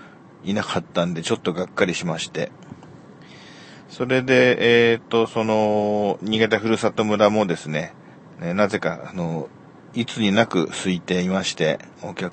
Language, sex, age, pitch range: Japanese, male, 40-59, 95-120 Hz